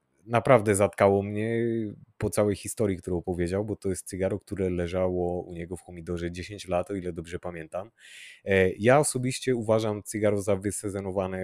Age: 30-49